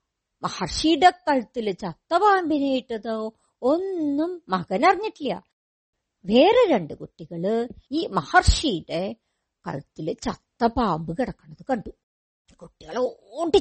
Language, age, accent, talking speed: Malayalam, 50-69, native, 85 wpm